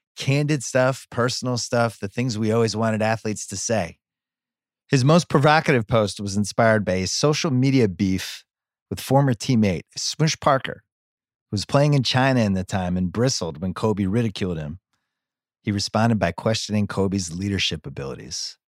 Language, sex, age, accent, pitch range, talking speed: English, male, 30-49, American, 95-125 Hz, 155 wpm